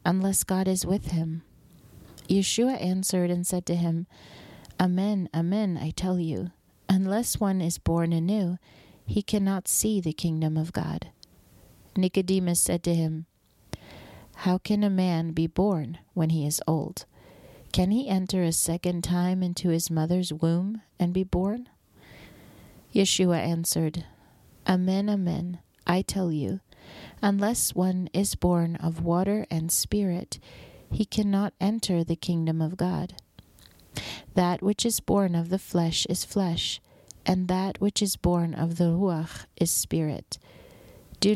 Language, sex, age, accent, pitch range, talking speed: English, female, 30-49, American, 165-190 Hz, 140 wpm